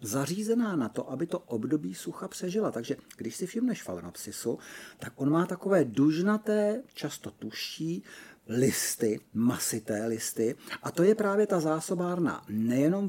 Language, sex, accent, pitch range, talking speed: Czech, male, native, 125-180 Hz, 140 wpm